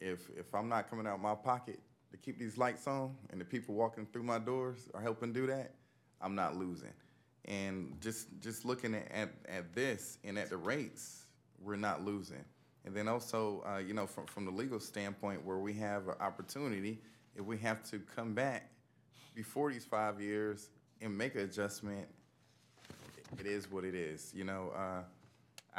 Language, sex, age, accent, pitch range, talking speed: English, male, 20-39, American, 95-115 Hz, 190 wpm